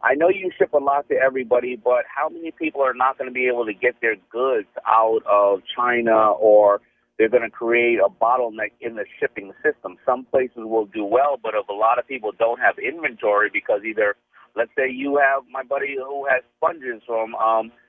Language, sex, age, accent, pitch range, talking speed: English, male, 50-69, American, 125-160 Hz, 210 wpm